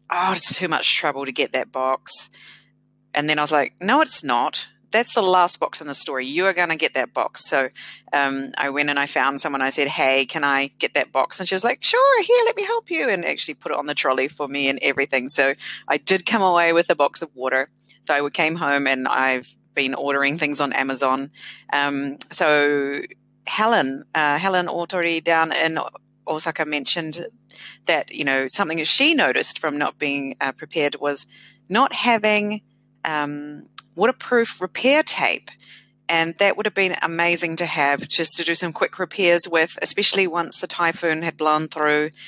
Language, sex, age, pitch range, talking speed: English, female, 30-49, 145-180 Hz, 195 wpm